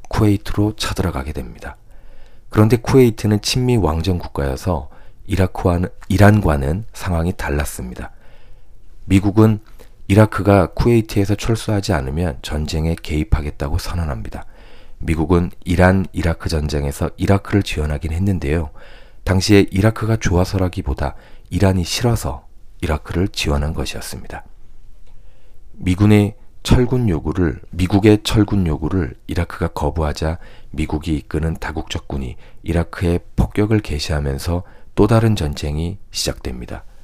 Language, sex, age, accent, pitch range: Korean, male, 40-59, native, 80-105 Hz